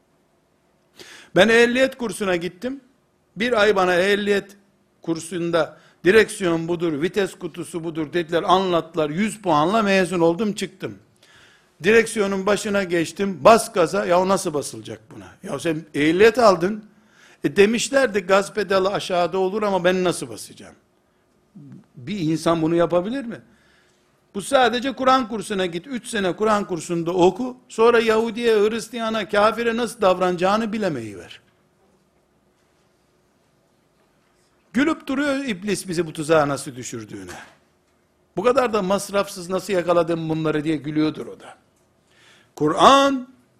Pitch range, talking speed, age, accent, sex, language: 170-225 Hz, 120 wpm, 60-79, native, male, Turkish